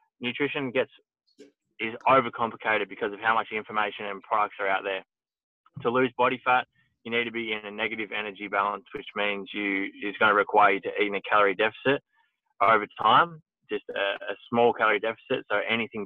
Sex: male